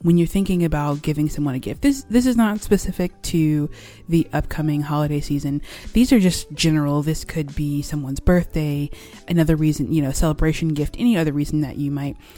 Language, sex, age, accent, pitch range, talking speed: English, female, 20-39, American, 145-175 Hz, 190 wpm